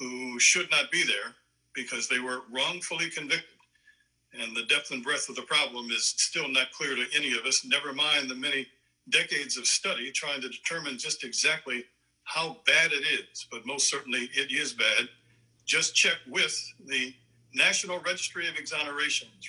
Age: 60-79